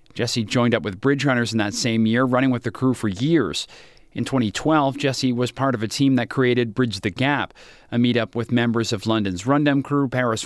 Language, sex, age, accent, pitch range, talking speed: English, male, 40-59, American, 115-135 Hz, 220 wpm